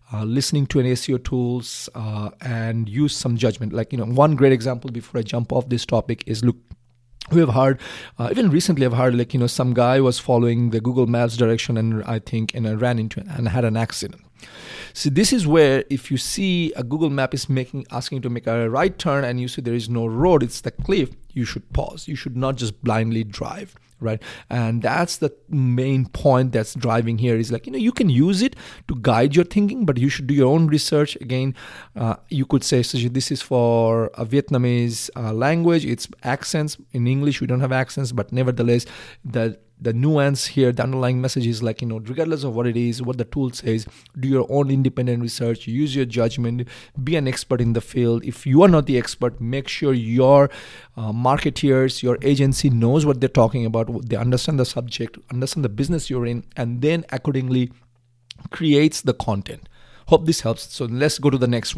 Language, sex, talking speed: English, male, 210 wpm